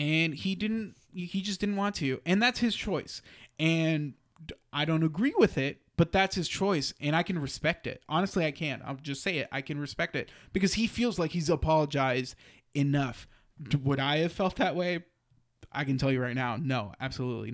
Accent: American